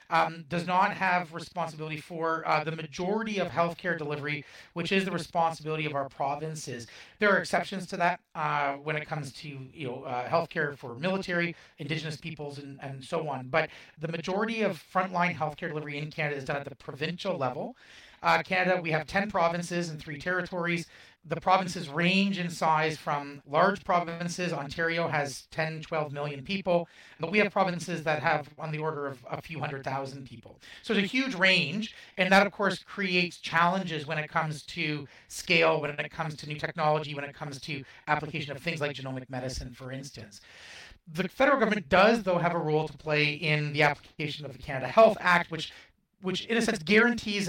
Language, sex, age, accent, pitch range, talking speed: English, male, 30-49, American, 150-185 Hz, 190 wpm